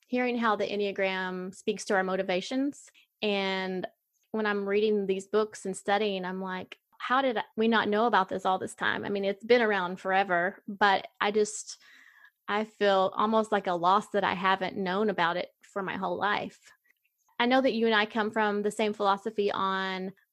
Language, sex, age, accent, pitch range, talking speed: English, female, 20-39, American, 185-210 Hz, 190 wpm